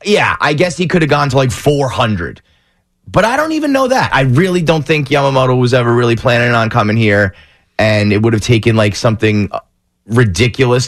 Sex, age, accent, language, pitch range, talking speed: male, 30-49, American, English, 115-155 Hz, 200 wpm